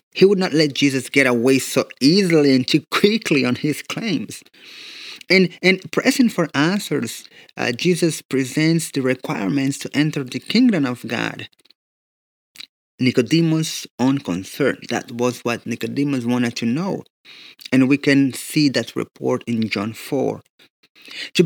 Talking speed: 145 wpm